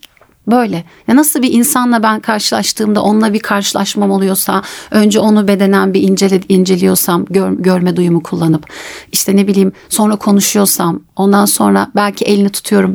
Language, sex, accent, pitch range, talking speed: Turkish, female, native, 190-265 Hz, 145 wpm